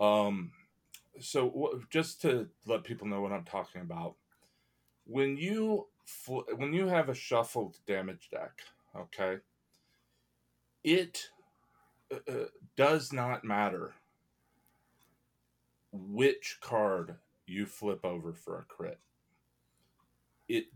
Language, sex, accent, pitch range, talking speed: English, male, American, 95-135 Hz, 100 wpm